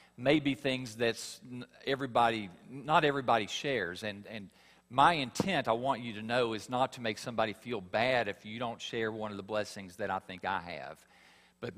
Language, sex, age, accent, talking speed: English, male, 50-69, American, 190 wpm